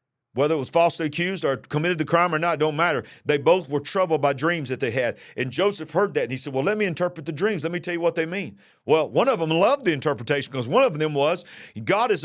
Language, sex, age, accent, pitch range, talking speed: English, male, 50-69, American, 135-195 Hz, 275 wpm